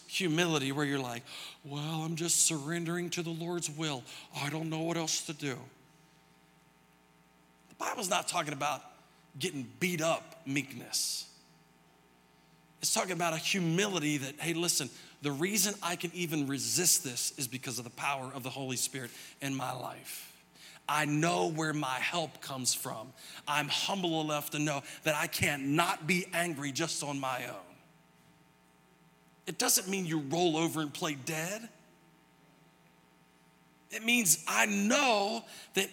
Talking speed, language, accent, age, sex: 150 wpm, English, American, 40-59, male